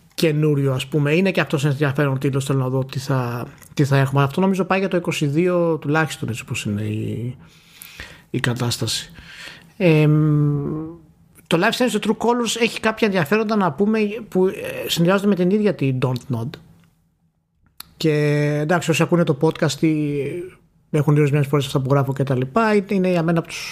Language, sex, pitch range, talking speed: Greek, male, 140-180 Hz, 175 wpm